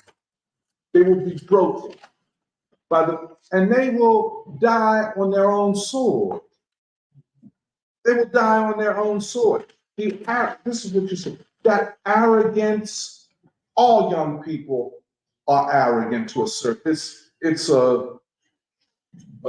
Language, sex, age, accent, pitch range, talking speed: English, male, 50-69, American, 165-220 Hz, 120 wpm